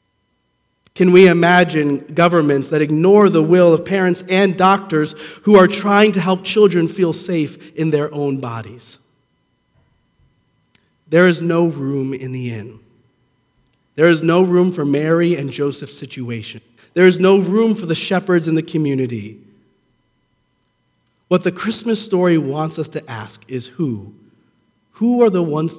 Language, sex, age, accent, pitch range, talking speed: English, male, 40-59, American, 135-180 Hz, 150 wpm